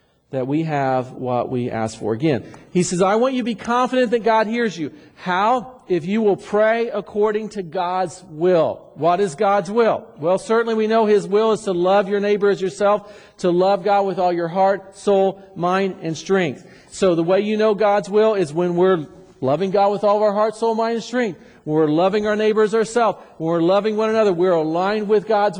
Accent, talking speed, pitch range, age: American, 215 wpm, 170-210 Hz, 50-69